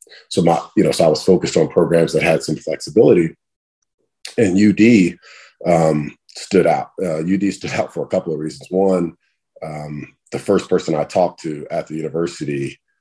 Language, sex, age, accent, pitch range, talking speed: English, male, 40-59, American, 80-120 Hz, 180 wpm